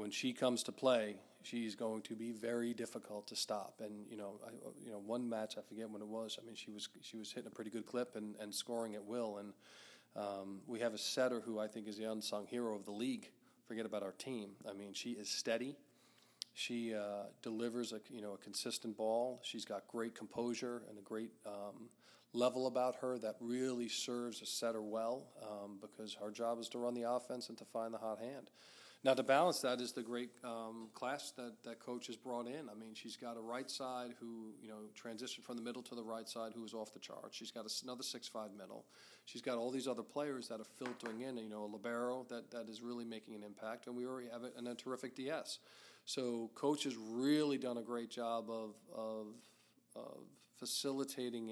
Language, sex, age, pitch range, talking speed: English, male, 40-59, 110-125 Hz, 225 wpm